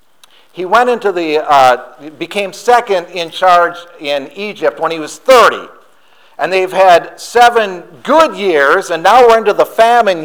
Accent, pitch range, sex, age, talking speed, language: American, 150-205 Hz, male, 50-69, 160 wpm, English